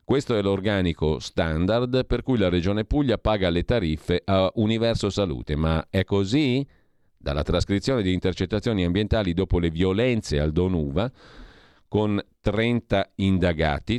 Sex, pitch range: male, 85-110 Hz